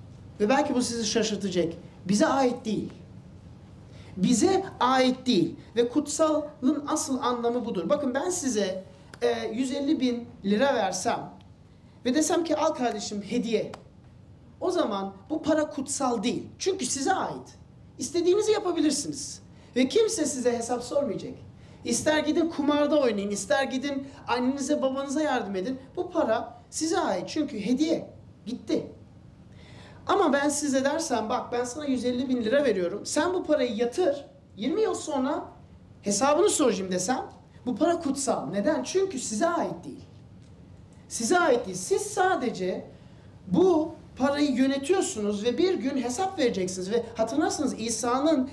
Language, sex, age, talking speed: Turkish, male, 40-59, 135 wpm